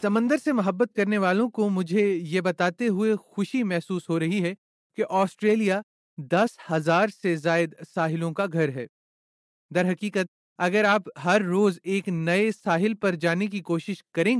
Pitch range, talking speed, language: 175-220 Hz, 160 wpm, Urdu